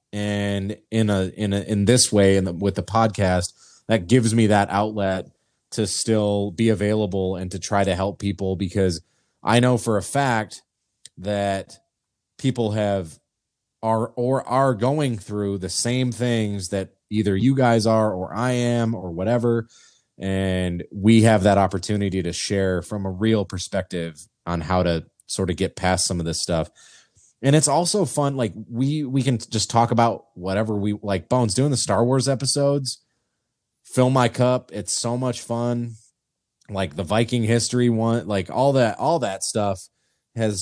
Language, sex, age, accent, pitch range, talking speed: English, male, 20-39, American, 95-120 Hz, 170 wpm